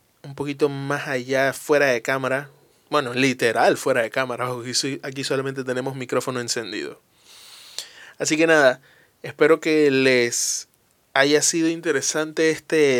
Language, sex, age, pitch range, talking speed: Spanish, male, 20-39, 135-180 Hz, 125 wpm